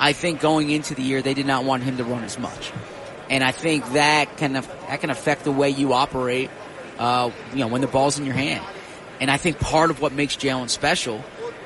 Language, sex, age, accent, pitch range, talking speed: English, male, 30-49, American, 135-155 Hz, 235 wpm